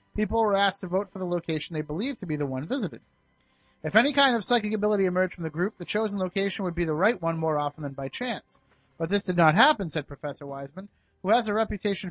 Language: English